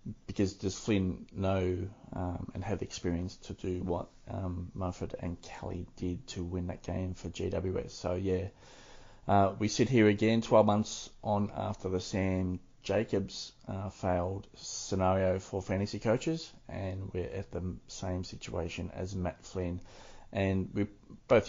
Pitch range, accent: 90-110 Hz, Australian